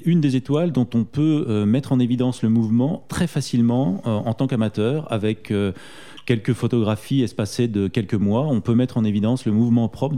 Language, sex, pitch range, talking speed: French, male, 95-125 Hz, 200 wpm